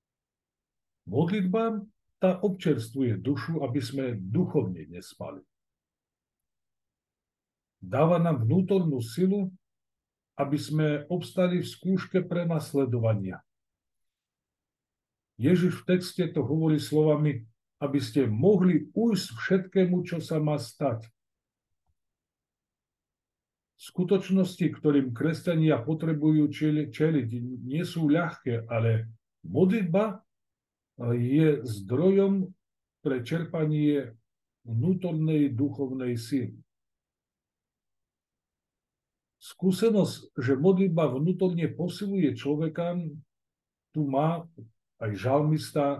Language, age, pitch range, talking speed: Slovak, 50-69, 125-170 Hz, 80 wpm